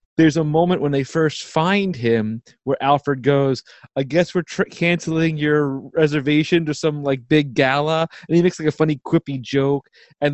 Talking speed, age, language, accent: 185 wpm, 30-49, English, American